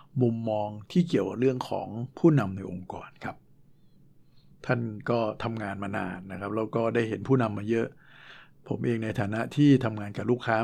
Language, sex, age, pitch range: Thai, male, 60-79, 110-130 Hz